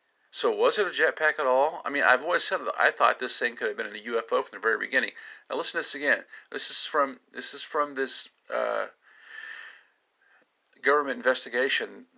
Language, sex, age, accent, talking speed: English, male, 50-69, American, 190 wpm